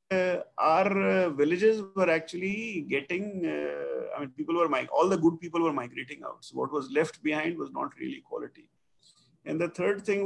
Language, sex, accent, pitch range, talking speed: English, male, Indian, 140-195 Hz, 195 wpm